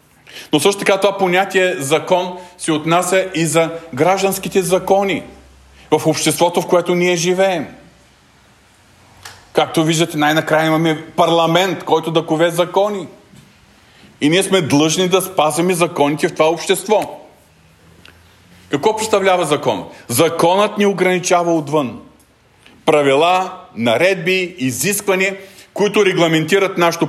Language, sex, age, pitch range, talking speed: Bulgarian, male, 40-59, 150-185 Hz, 110 wpm